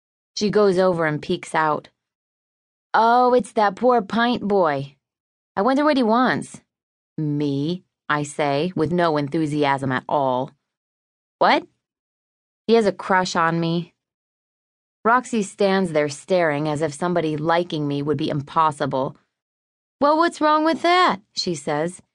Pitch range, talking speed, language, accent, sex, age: 160-235 Hz, 140 wpm, English, American, female, 20-39